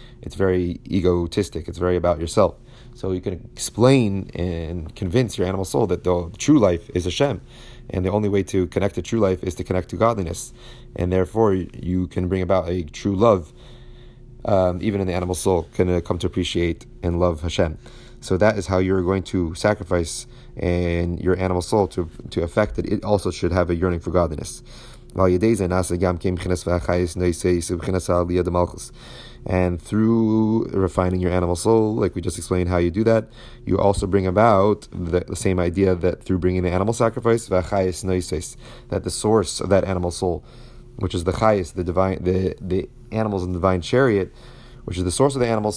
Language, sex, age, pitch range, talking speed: English, male, 30-49, 90-115 Hz, 180 wpm